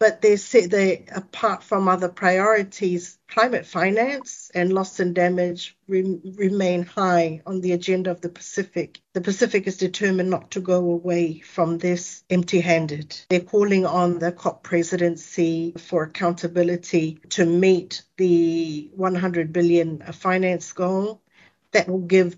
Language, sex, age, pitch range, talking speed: English, female, 50-69, 170-195 Hz, 140 wpm